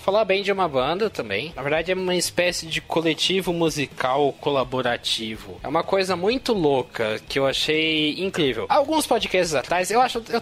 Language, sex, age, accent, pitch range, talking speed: Portuguese, male, 20-39, Brazilian, 140-180 Hz, 180 wpm